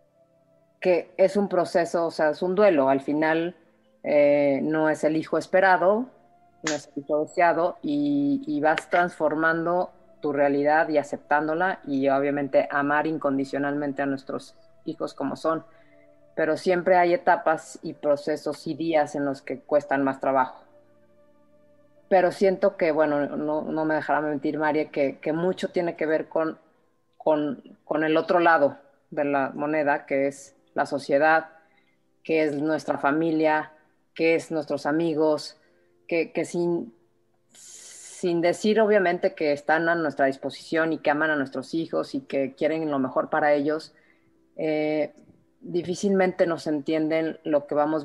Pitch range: 145-175 Hz